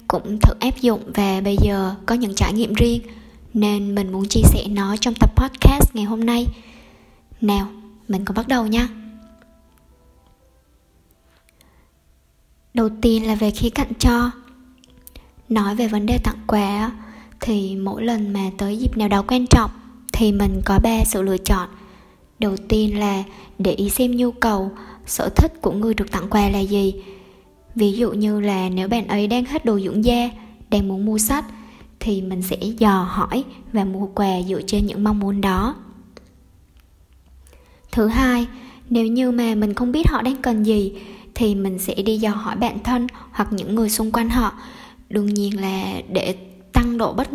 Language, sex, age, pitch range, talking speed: Vietnamese, male, 10-29, 195-230 Hz, 175 wpm